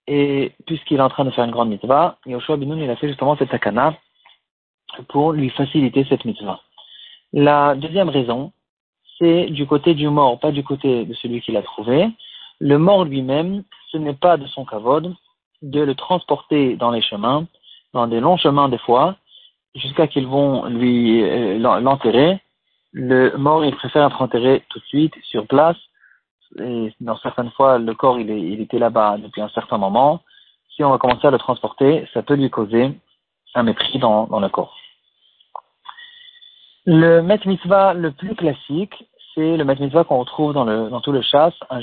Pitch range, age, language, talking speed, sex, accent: 120-155 Hz, 40-59, French, 185 wpm, male, French